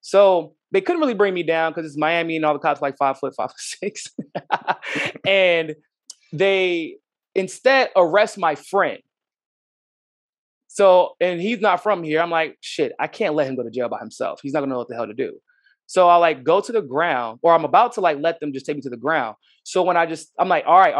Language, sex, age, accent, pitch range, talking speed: English, male, 20-39, American, 155-215 Hz, 235 wpm